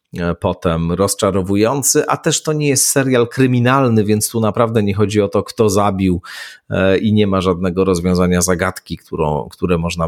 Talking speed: 155 wpm